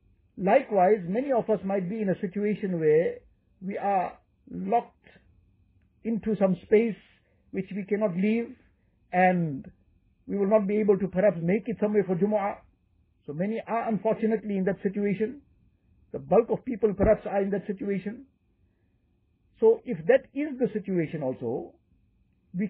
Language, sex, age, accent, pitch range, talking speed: English, male, 60-79, Indian, 165-220 Hz, 150 wpm